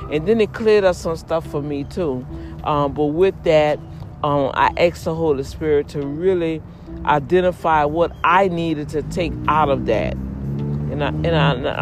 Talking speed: 160 wpm